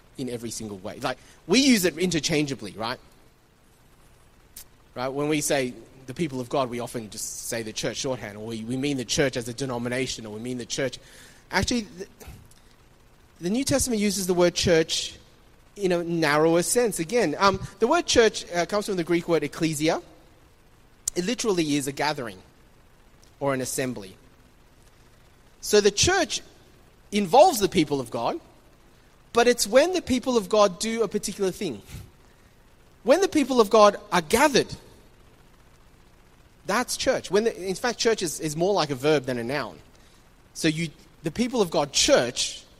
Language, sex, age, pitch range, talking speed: English, male, 30-49, 125-210 Hz, 165 wpm